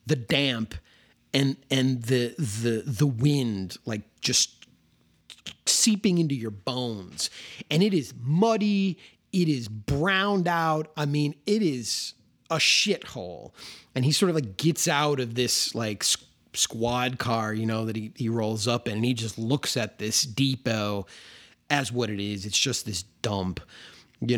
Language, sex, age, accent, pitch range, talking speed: English, male, 30-49, American, 110-145 Hz, 160 wpm